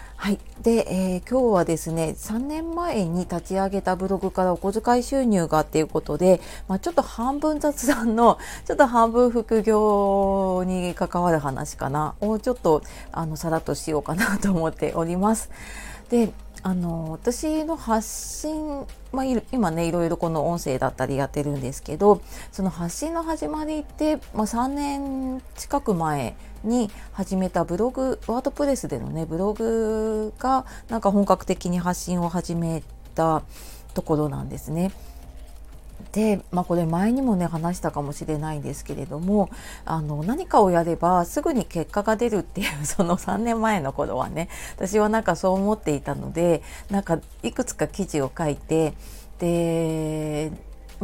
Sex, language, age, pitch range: female, Japanese, 30-49, 160-220 Hz